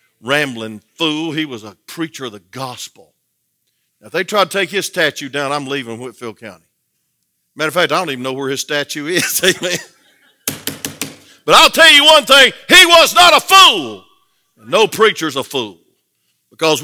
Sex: male